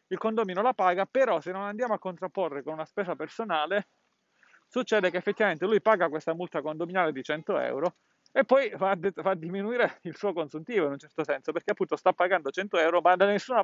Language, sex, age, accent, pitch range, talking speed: Italian, male, 30-49, native, 150-195 Hz, 210 wpm